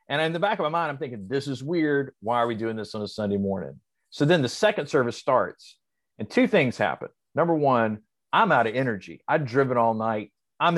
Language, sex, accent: English, male, American